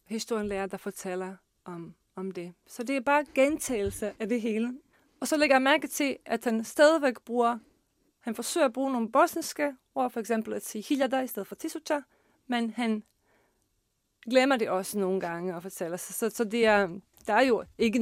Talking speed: 200 wpm